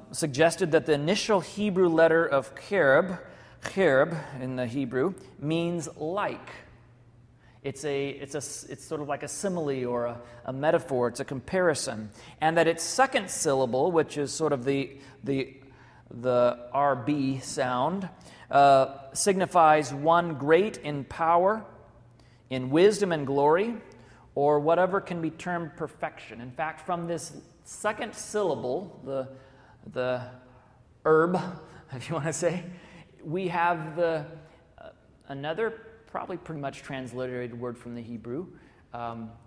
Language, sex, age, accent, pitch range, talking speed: English, male, 40-59, American, 130-170 Hz, 135 wpm